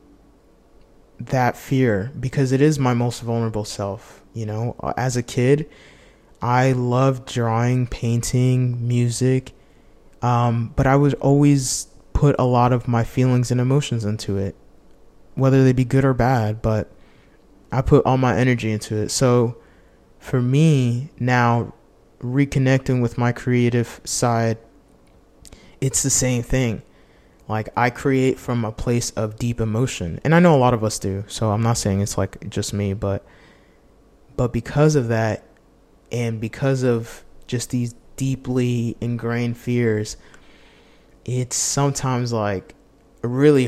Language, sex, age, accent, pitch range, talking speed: English, male, 20-39, American, 115-130 Hz, 140 wpm